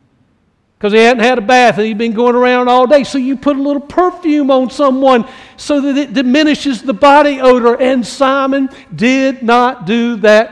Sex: male